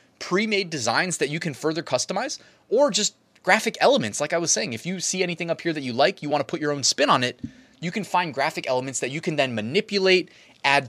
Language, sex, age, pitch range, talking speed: English, male, 20-39, 135-185 Hz, 240 wpm